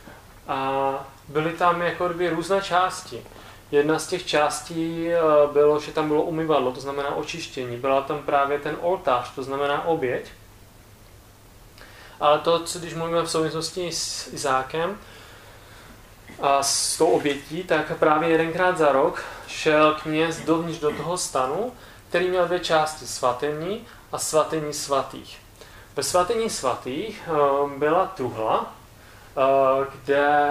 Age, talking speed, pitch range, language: 30-49, 130 wpm, 135-165 Hz, Czech